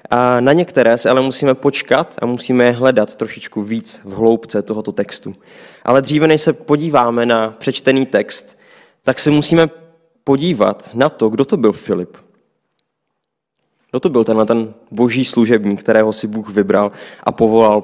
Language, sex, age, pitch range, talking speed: Czech, male, 20-39, 115-135 Hz, 160 wpm